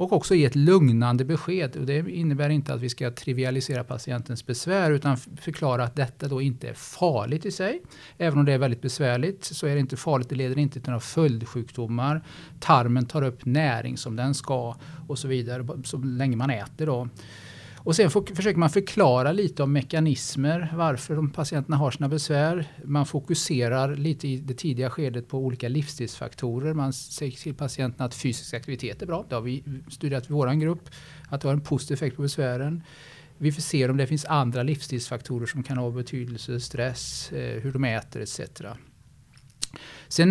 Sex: male